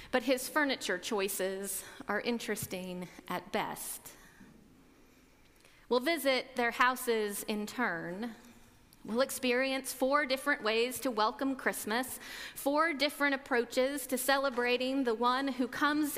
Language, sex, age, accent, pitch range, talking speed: English, female, 40-59, American, 225-275 Hz, 115 wpm